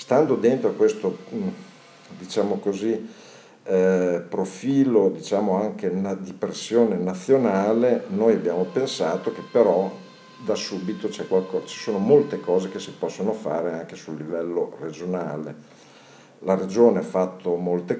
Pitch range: 90-105 Hz